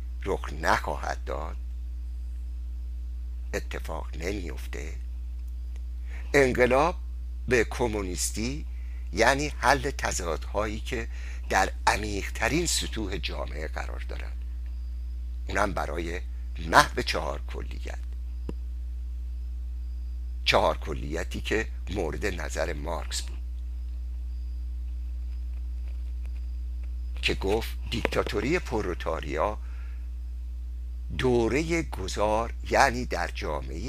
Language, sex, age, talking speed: Persian, male, 60-79, 75 wpm